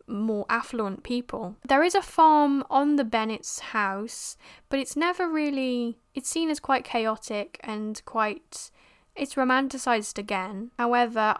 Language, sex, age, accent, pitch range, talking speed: English, female, 10-29, British, 205-250 Hz, 135 wpm